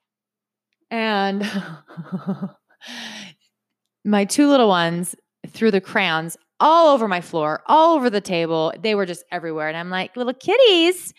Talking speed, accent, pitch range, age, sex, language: 135 wpm, American, 165-250 Hz, 20-39, female, English